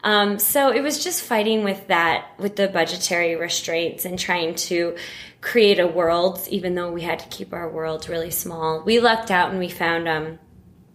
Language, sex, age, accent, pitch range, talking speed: English, female, 20-39, American, 165-195 Hz, 195 wpm